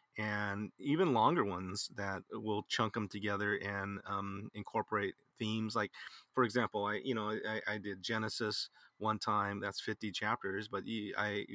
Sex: male